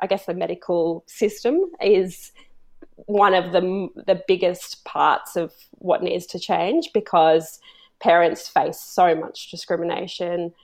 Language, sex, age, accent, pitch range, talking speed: English, female, 20-39, Australian, 175-205 Hz, 130 wpm